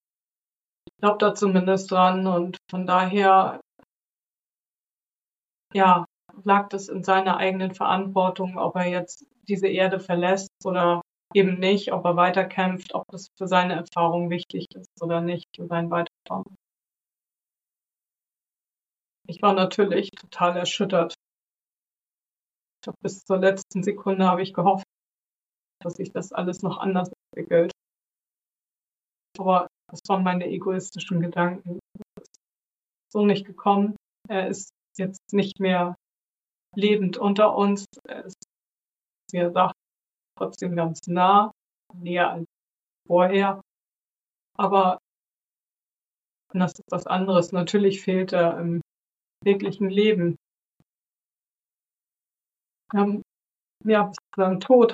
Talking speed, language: 110 wpm, German